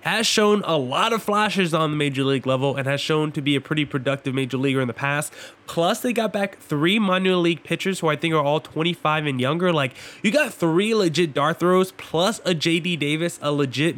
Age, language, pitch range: 20-39, English, 160-210 Hz